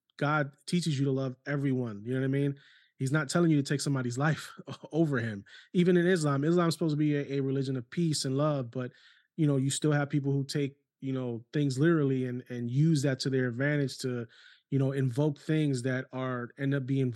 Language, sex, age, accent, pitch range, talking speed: English, male, 20-39, American, 135-165 Hz, 230 wpm